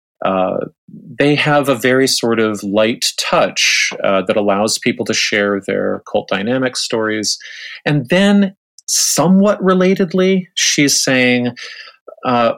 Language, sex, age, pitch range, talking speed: English, male, 40-59, 95-145 Hz, 125 wpm